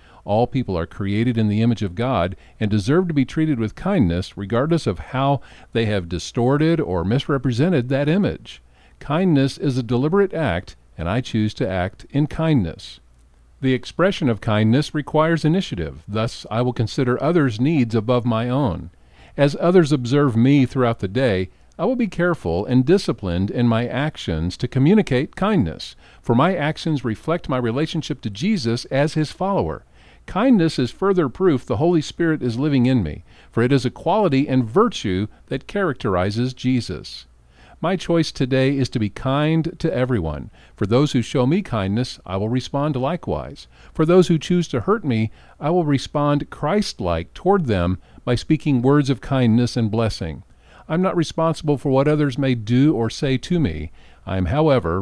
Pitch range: 105-155 Hz